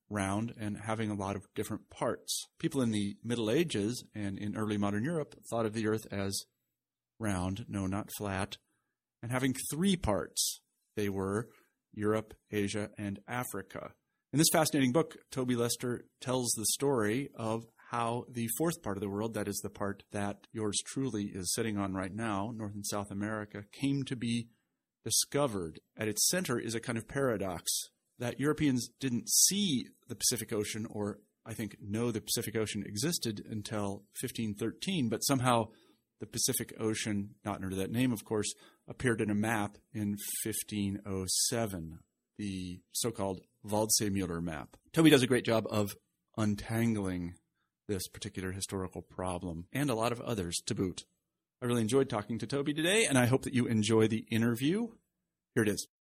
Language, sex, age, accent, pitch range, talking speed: English, male, 40-59, American, 100-120 Hz, 170 wpm